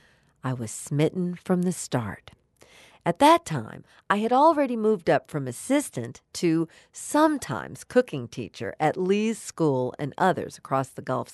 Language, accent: English, American